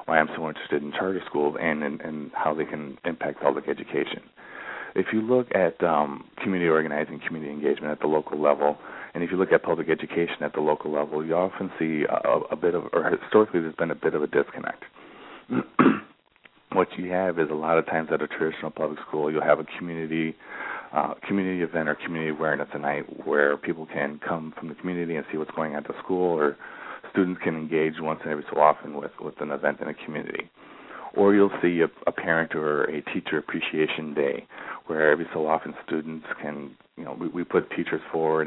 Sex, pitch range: male, 75-90 Hz